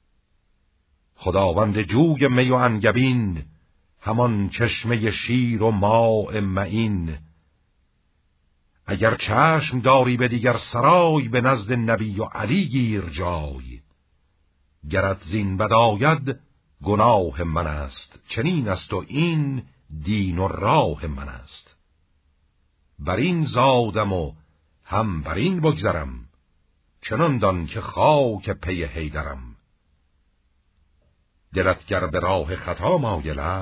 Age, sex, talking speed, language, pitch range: 60-79, male, 100 wpm, Persian, 75-110 Hz